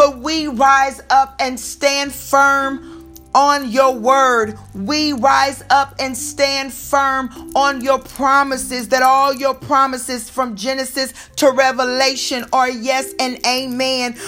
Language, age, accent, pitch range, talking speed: English, 40-59, American, 255-280 Hz, 130 wpm